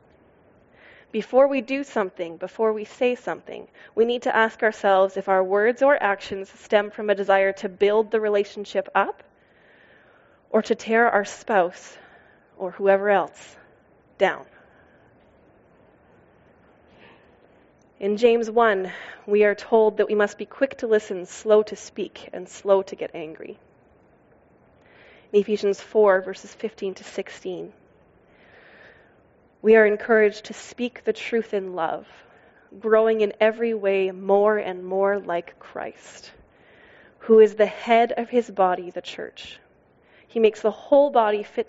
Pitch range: 195-225 Hz